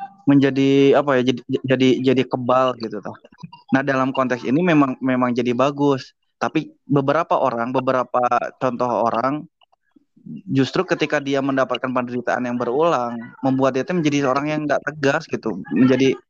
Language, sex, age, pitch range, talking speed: Indonesian, male, 20-39, 125-170 Hz, 145 wpm